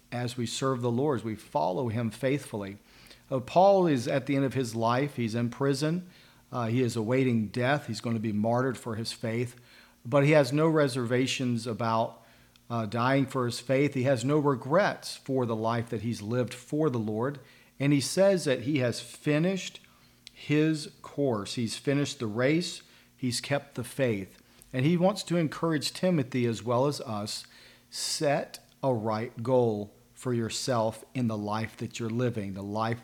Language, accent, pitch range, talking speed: English, American, 115-140 Hz, 180 wpm